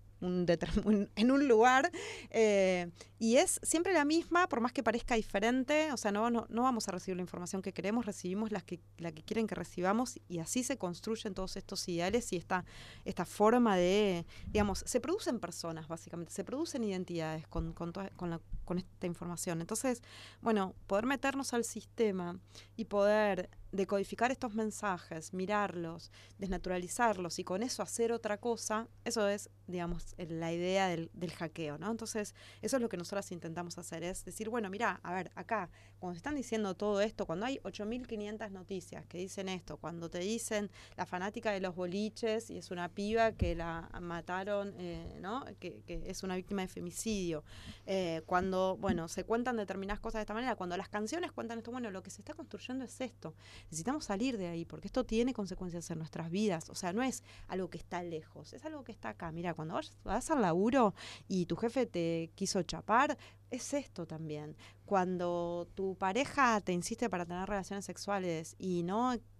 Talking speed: 190 wpm